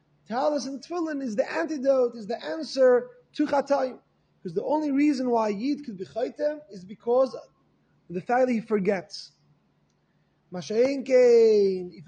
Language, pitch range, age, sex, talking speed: English, 225-285 Hz, 30-49, male, 145 wpm